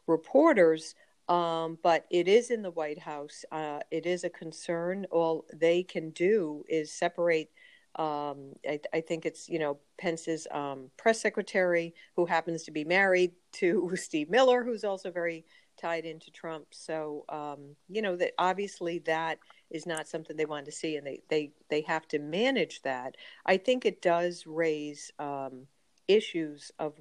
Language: English